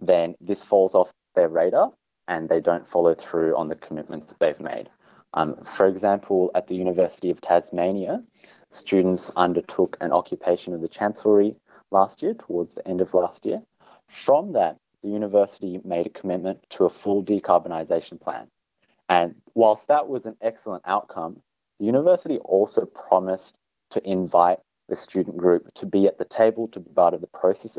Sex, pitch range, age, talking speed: male, 85-105 Hz, 30-49, 170 wpm